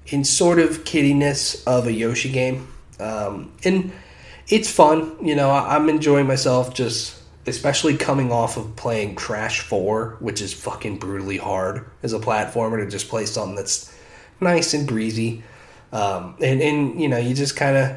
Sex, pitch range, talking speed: male, 110-140 Hz, 165 wpm